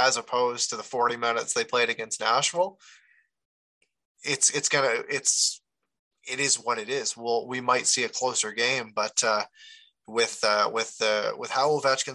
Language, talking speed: English, 180 wpm